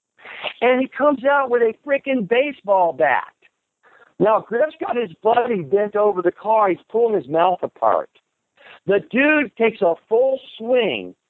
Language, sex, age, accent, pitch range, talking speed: English, male, 60-79, American, 185-270 Hz, 155 wpm